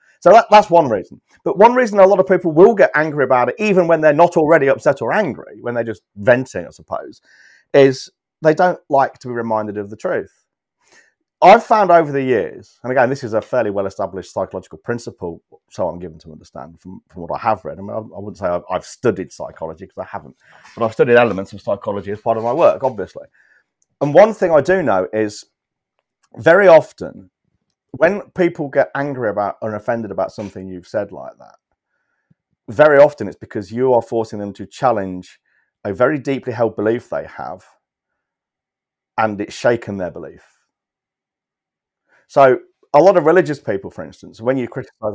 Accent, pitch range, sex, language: British, 110-160 Hz, male, English